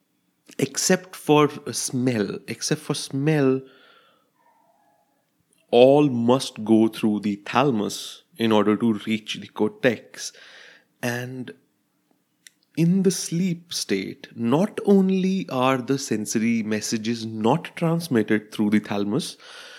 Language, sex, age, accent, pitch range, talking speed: English, male, 30-49, Indian, 105-140 Hz, 105 wpm